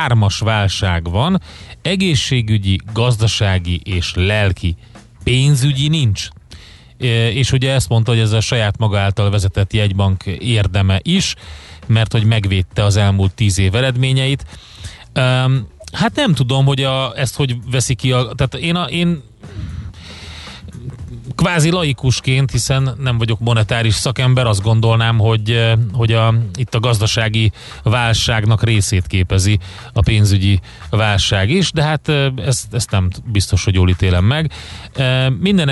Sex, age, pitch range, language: male, 30-49, 100-130 Hz, Hungarian